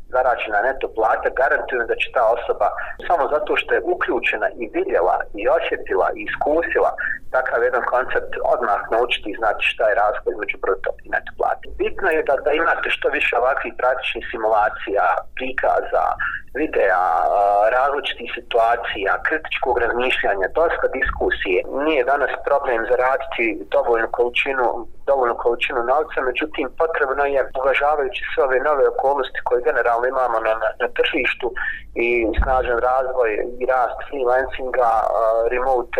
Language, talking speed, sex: Croatian, 135 wpm, male